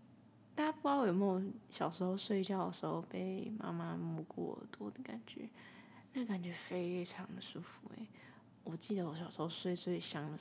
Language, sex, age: Chinese, female, 20-39